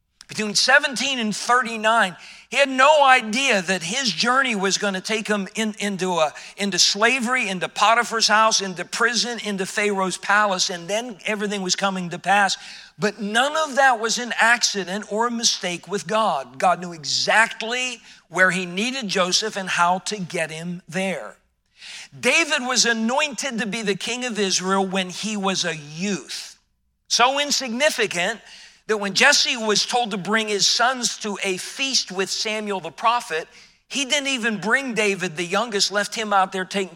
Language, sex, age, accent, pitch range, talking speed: English, male, 50-69, American, 185-230 Hz, 165 wpm